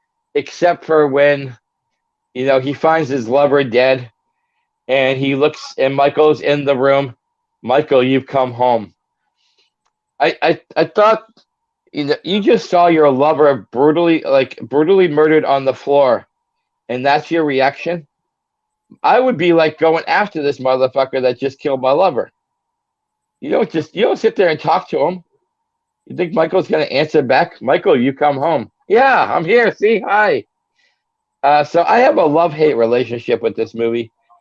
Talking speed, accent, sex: 165 wpm, American, male